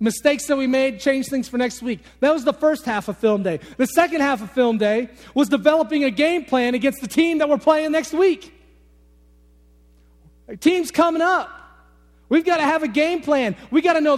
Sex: male